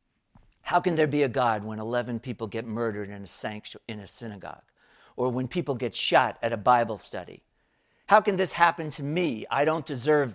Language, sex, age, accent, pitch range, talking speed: English, male, 50-69, American, 115-155 Hz, 190 wpm